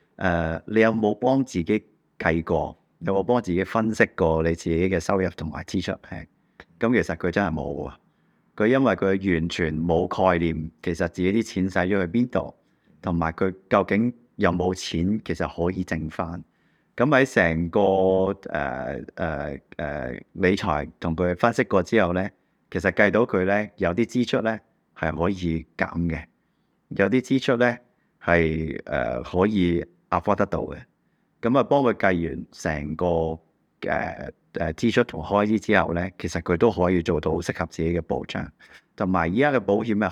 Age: 30-49